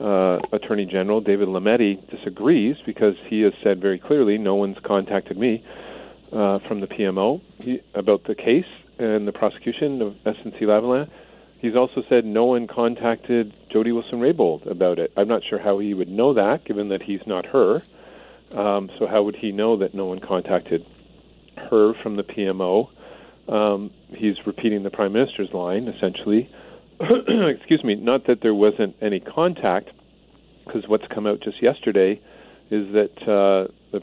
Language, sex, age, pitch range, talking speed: English, male, 40-59, 95-110 Hz, 160 wpm